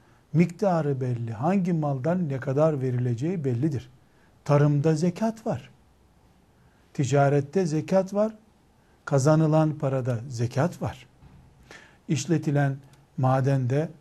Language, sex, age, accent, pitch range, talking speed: Turkish, male, 60-79, native, 130-175 Hz, 85 wpm